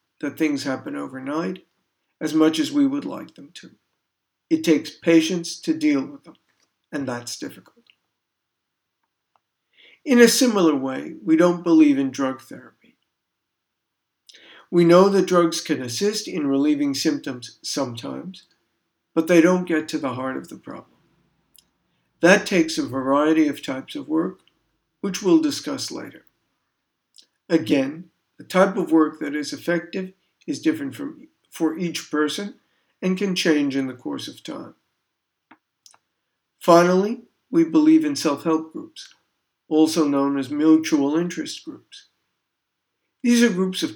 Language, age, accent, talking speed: English, 60-79, American, 135 wpm